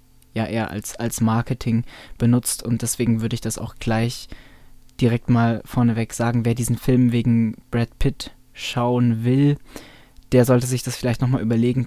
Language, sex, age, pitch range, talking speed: German, male, 20-39, 110-125 Hz, 160 wpm